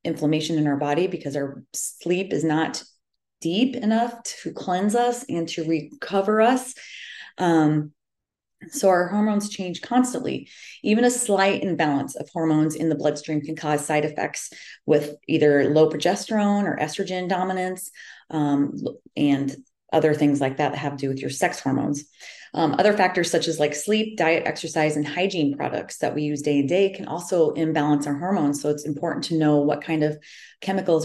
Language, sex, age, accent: English, female, 30-49, American